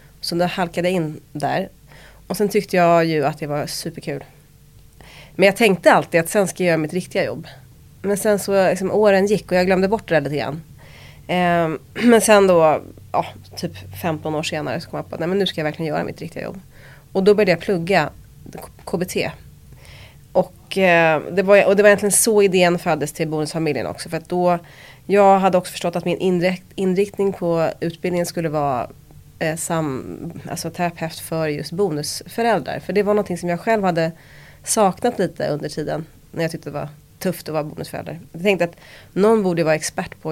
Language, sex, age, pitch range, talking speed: English, female, 30-49, 150-190 Hz, 195 wpm